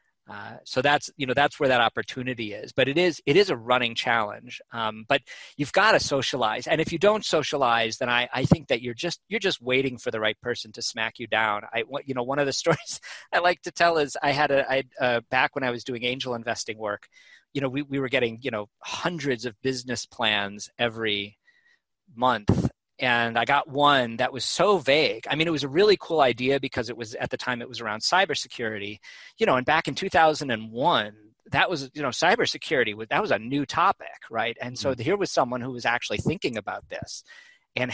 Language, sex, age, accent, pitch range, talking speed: English, male, 40-59, American, 115-145 Hz, 225 wpm